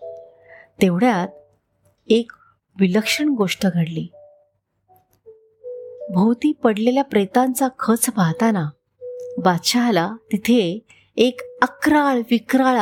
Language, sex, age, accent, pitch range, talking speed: Marathi, female, 30-49, native, 180-290 Hz, 70 wpm